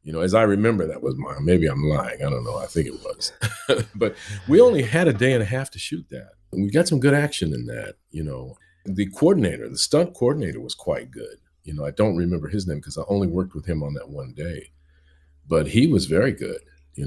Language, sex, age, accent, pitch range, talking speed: English, male, 50-69, American, 80-110 Hz, 250 wpm